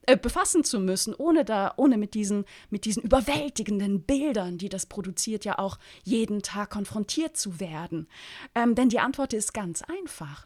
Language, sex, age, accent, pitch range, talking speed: German, female, 30-49, German, 195-275 Hz, 170 wpm